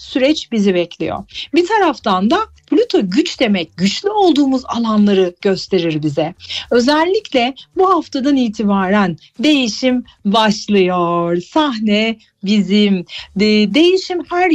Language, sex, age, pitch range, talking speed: Turkish, female, 40-59, 200-310 Hz, 100 wpm